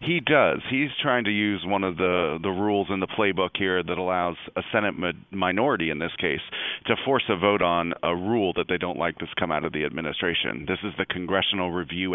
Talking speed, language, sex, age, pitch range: 220 wpm, English, male, 40-59, 85-95 Hz